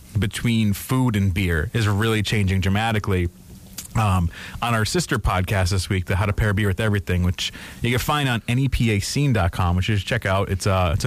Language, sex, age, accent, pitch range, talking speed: English, male, 30-49, American, 95-110 Hz, 190 wpm